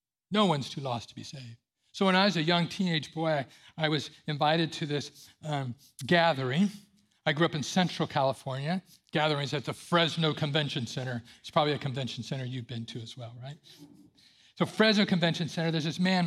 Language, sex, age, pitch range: English, male, 50-69, 140-185 Hz